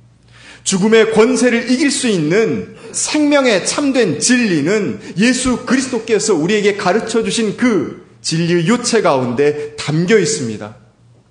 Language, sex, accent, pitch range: Korean, male, native, 125-205 Hz